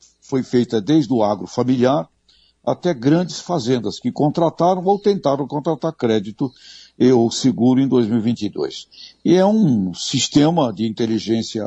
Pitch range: 120-165 Hz